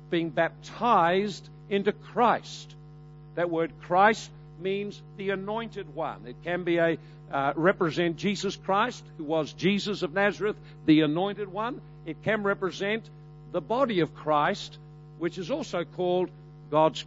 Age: 60-79